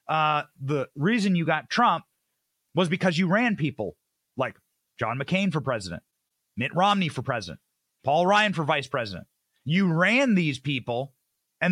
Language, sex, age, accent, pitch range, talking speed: English, male, 30-49, American, 145-205 Hz, 155 wpm